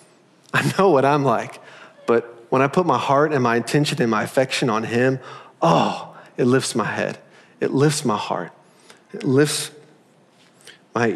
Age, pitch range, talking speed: 40-59, 120-155 Hz, 165 wpm